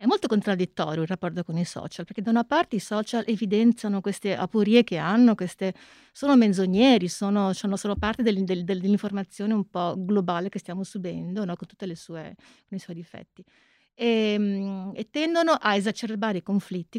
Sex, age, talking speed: female, 30-49, 170 wpm